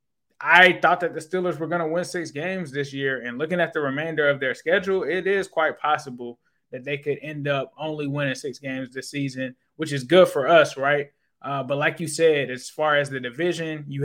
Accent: American